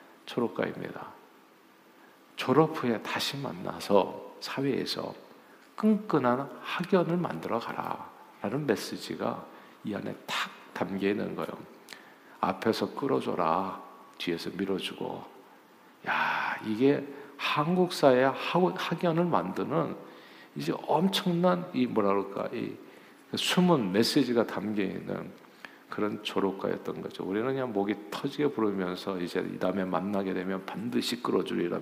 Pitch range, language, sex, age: 95-145 Hz, Korean, male, 50-69